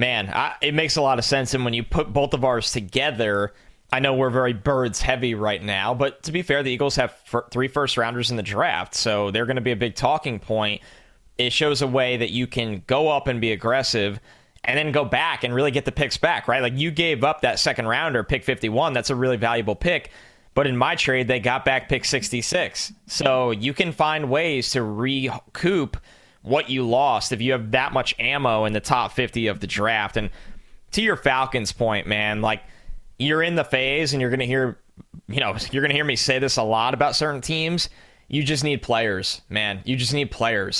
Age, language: 20-39, English